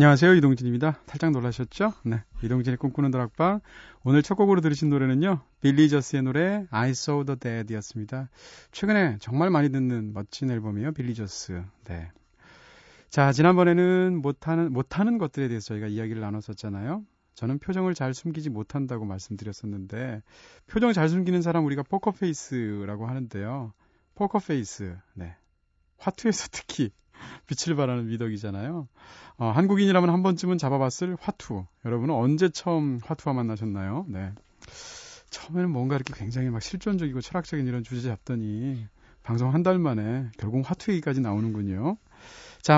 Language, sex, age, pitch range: Korean, male, 30-49, 115-170 Hz